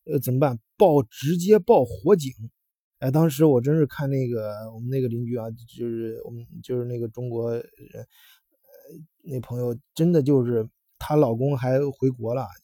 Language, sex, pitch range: Chinese, male, 120-140 Hz